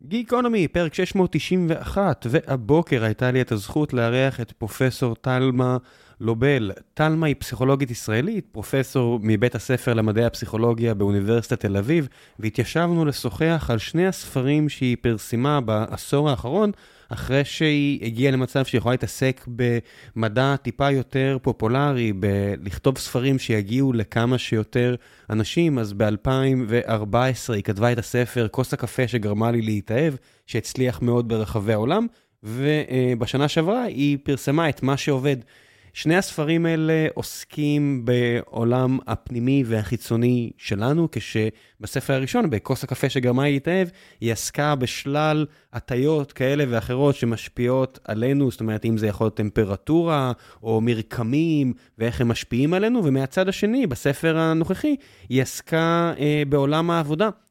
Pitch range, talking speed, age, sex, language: 115-145 Hz, 120 wpm, 20-39, male, Hebrew